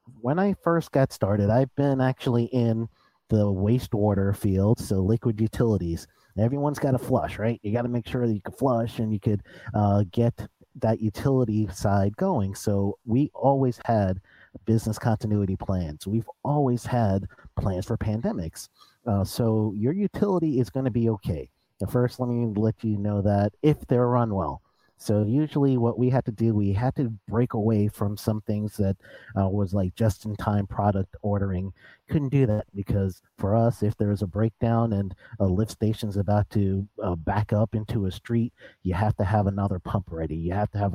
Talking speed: 185 wpm